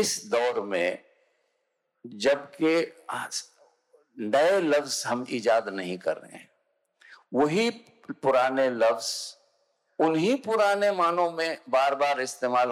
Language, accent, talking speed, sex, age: Hindi, native, 95 wpm, male, 50-69